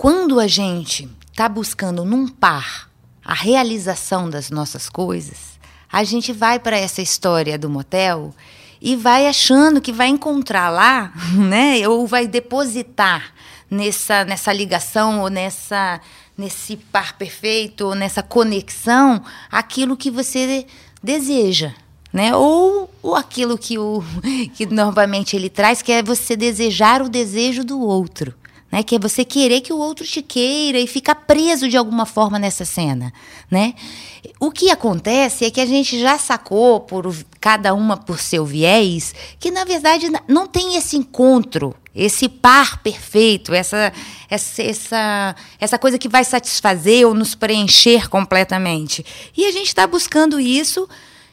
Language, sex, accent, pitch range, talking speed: Portuguese, female, Brazilian, 195-265 Hz, 145 wpm